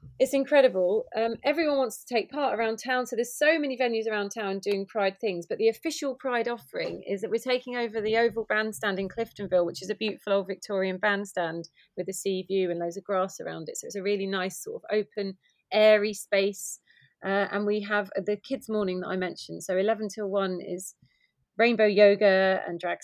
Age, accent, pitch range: 30-49, British, 190-220 Hz